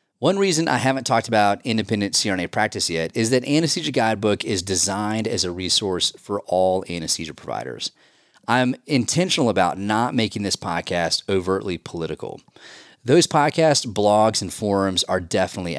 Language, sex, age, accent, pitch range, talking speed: English, male, 30-49, American, 100-130 Hz, 150 wpm